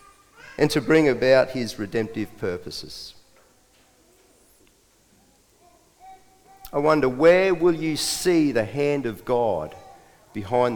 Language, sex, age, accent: English, male, 50-69, Australian